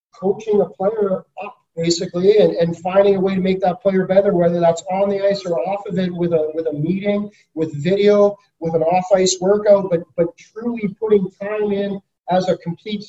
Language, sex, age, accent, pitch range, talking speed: English, male, 30-49, American, 170-200 Hz, 200 wpm